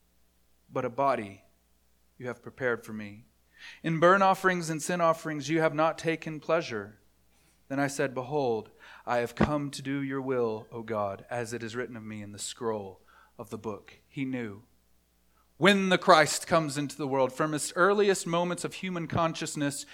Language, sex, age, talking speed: English, male, 40-59, 180 wpm